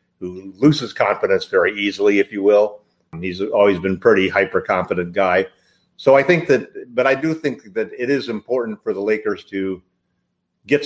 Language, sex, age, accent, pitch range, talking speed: English, male, 50-69, American, 100-140 Hz, 180 wpm